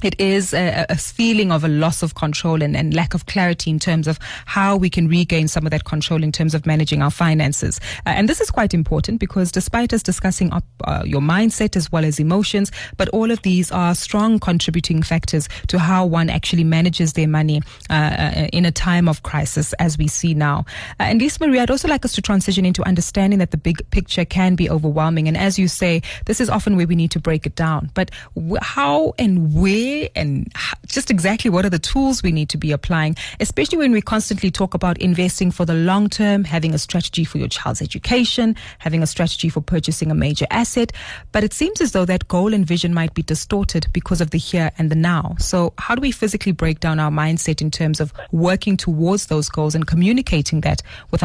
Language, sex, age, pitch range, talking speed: English, female, 20-39, 155-195 Hz, 220 wpm